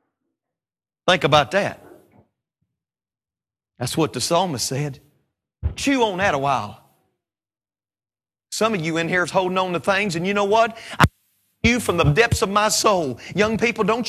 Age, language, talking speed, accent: 40-59, English, 160 wpm, American